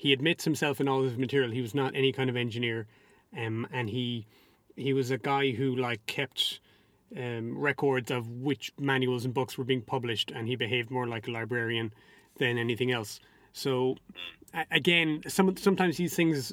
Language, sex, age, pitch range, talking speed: English, male, 30-49, 130-155 Hz, 180 wpm